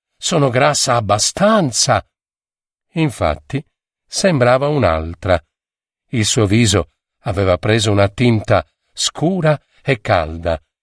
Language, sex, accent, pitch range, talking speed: Italian, male, native, 100-130 Hz, 90 wpm